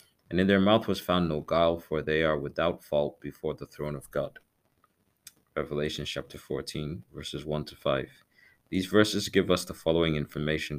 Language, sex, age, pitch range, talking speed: English, male, 30-49, 75-90 Hz, 180 wpm